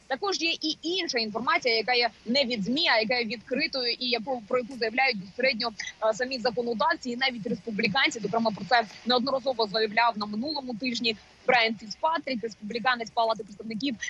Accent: native